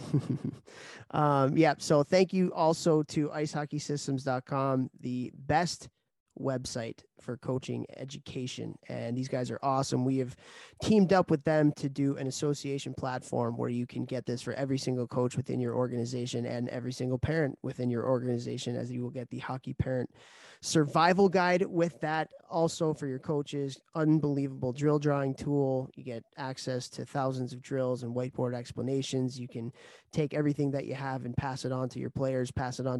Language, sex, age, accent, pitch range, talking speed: English, male, 20-39, American, 125-145 Hz, 175 wpm